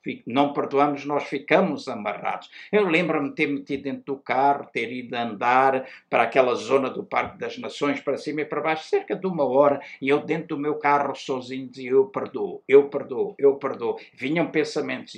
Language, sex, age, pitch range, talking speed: Portuguese, male, 60-79, 135-165 Hz, 185 wpm